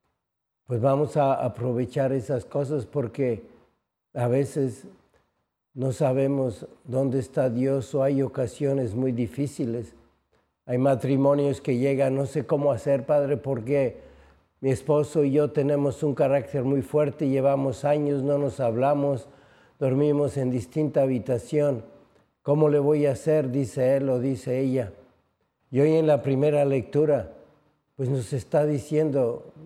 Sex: male